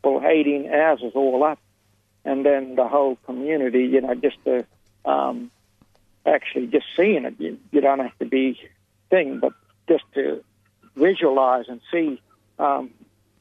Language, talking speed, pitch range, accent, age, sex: English, 150 wpm, 105-145 Hz, American, 60-79, male